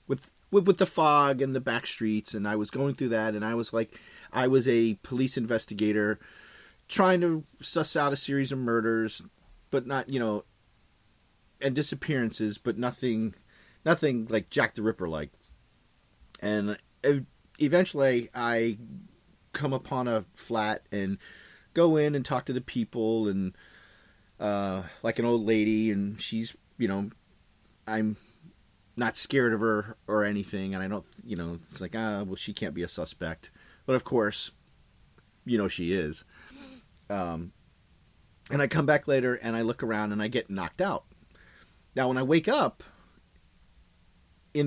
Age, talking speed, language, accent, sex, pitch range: 30-49, 155 wpm, English, American, male, 105-135 Hz